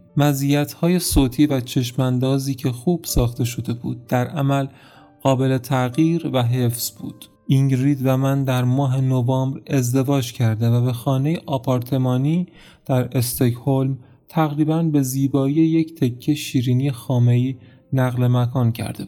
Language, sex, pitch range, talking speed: Persian, male, 125-150 Hz, 125 wpm